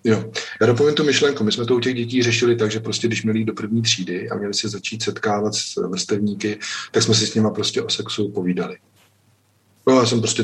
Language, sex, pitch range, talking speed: Czech, male, 100-115 Hz, 230 wpm